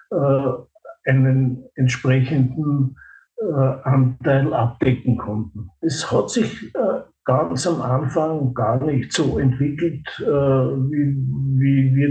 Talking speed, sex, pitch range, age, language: 105 wpm, male, 130-145 Hz, 60-79, German